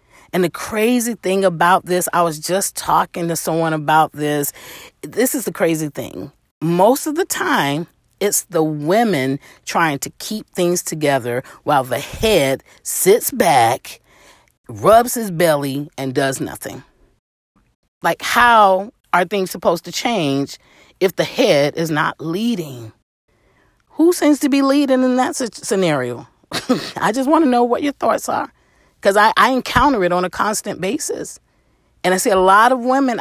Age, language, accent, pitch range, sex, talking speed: 40-59, English, American, 145-215 Hz, female, 160 wpm